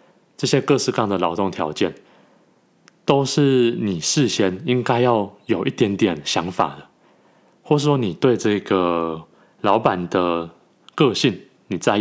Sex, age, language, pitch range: male, 20-39, Chinese, 90-120 Hz